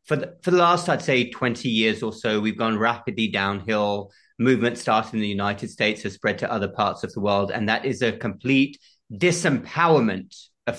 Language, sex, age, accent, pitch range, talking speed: English, male, 40-59, British, 110-150 Hz, 200 wpm